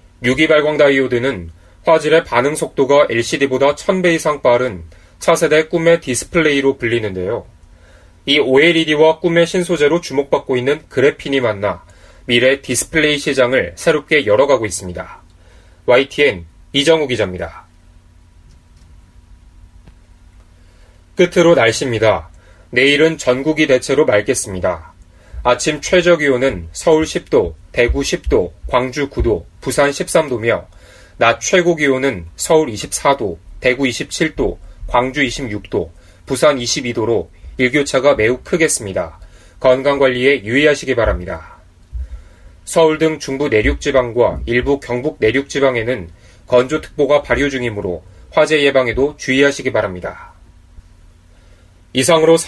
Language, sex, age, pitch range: Korean, male, 30-49, 90-150 Hz